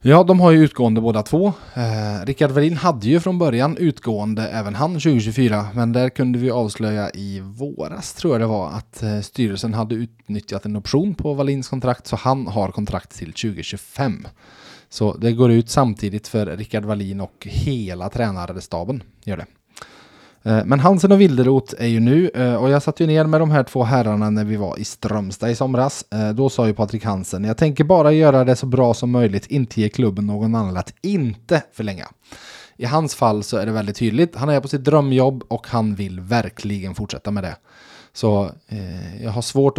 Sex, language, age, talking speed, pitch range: male, Swedish, 20-39, 195 wpm, 105-135 Hz